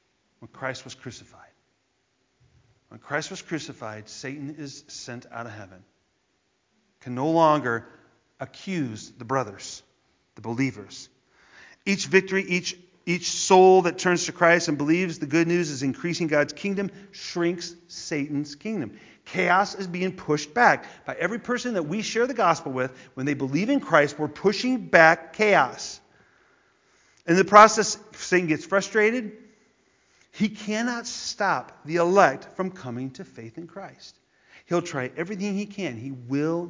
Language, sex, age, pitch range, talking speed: English, male, 40-59, 140-190 Hz, 145 wpm